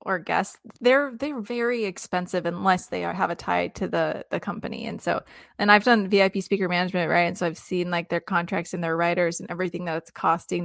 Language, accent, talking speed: English, American, 225 wpm